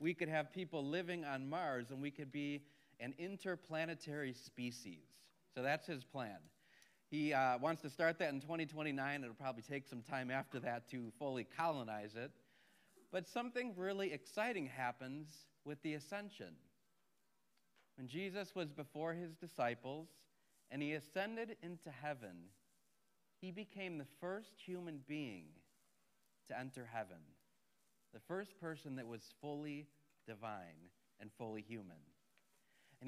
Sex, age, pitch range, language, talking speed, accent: male, 40-59, 120-170 Hz, English, 140 wpm, American